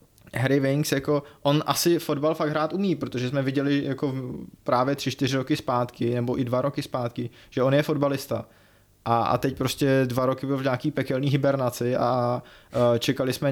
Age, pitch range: 20-39, 125-145 Hz